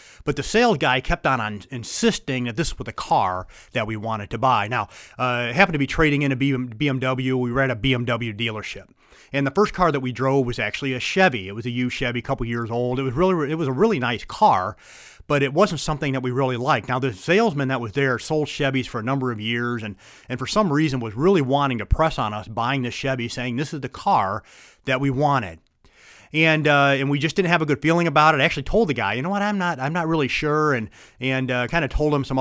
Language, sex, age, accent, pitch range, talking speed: English, male, 30-49, American, 120-150 Hz, 255 wpm